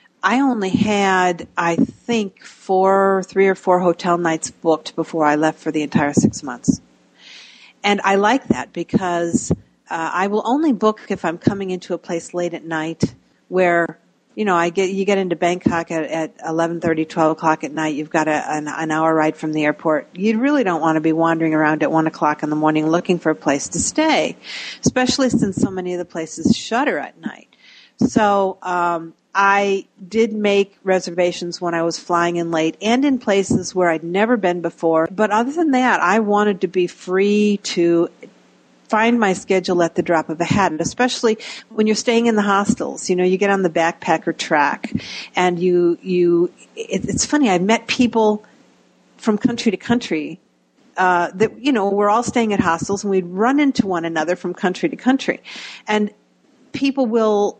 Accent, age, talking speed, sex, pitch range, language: American, 50-69, 195 wpm, female, 170-215 Hz, English